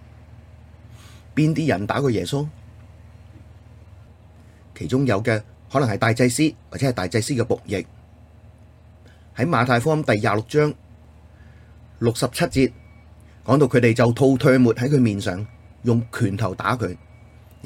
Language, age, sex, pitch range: Chinese, 30-49, male, 100-125 Hz